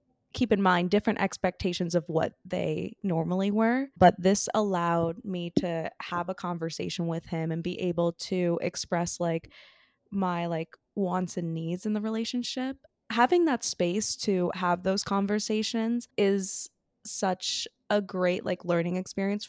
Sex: female